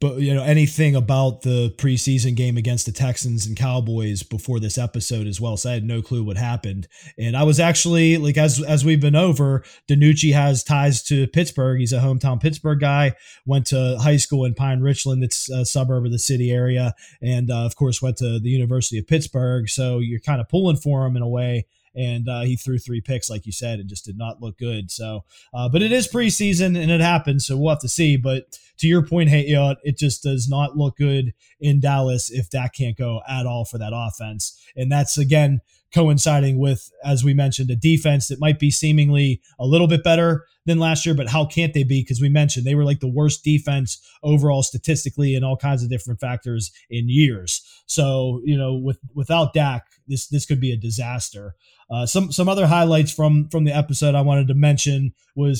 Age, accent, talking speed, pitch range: 20-39, American, 220 wpm, 125-150 Hz